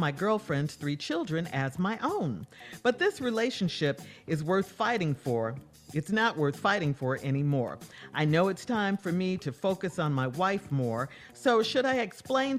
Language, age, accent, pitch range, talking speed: English, 50-69, American, 150-240 Hz, 170 wpm